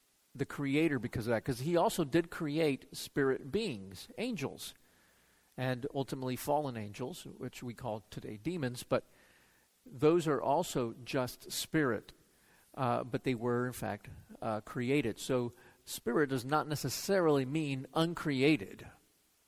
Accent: American